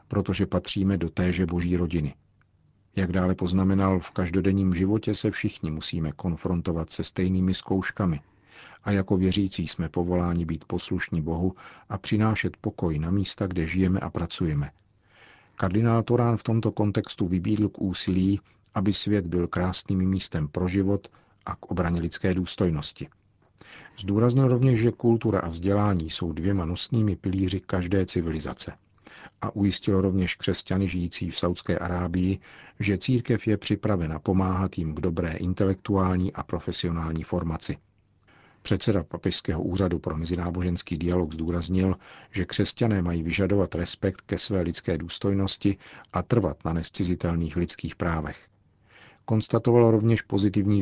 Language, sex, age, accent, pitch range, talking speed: Czech, male, 50-69, native, 85-100 Hz, 135 wpm